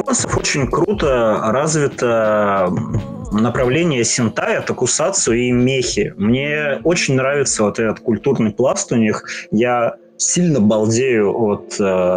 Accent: native